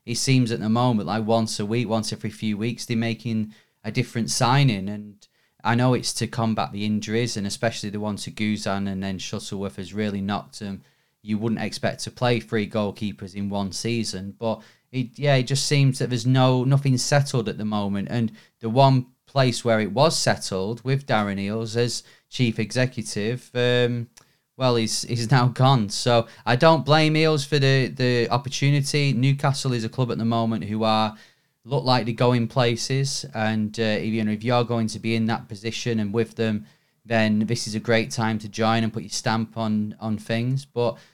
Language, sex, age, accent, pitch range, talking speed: English, male, 30-49, British, 110-125 Hz, 200 wpm